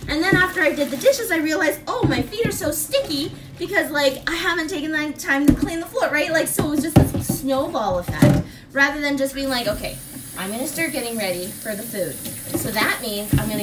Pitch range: 240-315 Hz